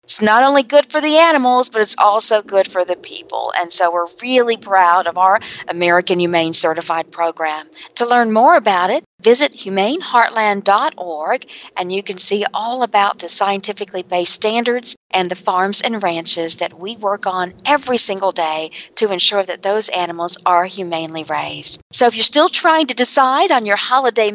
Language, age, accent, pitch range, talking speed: English, 50-69, American, 185-240 Hz, 175 wpm